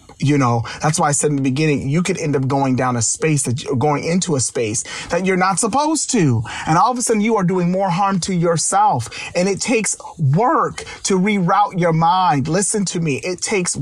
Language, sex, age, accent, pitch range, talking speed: English, male, 30-49, American, 135-185 Hz, 230 wpm